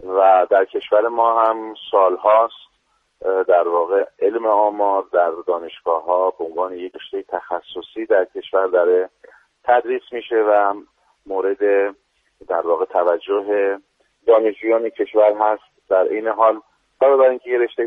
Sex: male